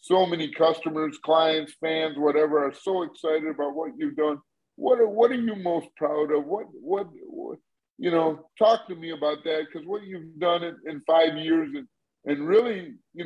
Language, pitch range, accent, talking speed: English, 160-190 Hz, American, 195 wpm